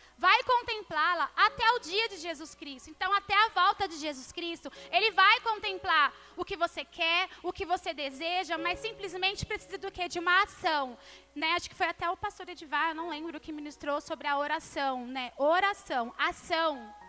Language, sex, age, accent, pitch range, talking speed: Portuguese, female, 20-39, Brazilian, 320-405 Hz, 185 wpm